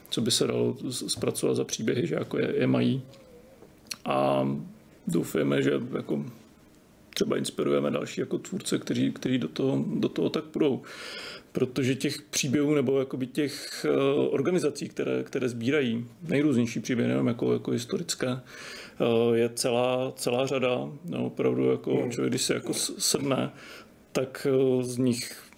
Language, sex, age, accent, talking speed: Czech, male, 40-59, native, 140 wpm